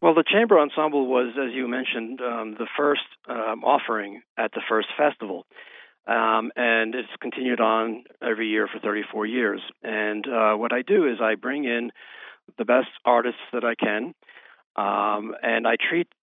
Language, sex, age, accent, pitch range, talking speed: English, male, 50-69, American, 110-130 Hz, 170 wpm